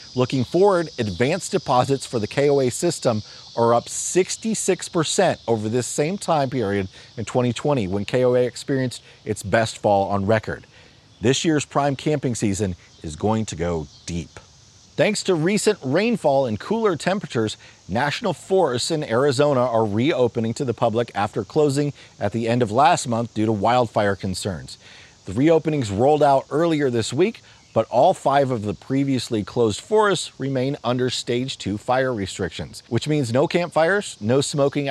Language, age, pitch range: English, 40-59, 110-145 Hz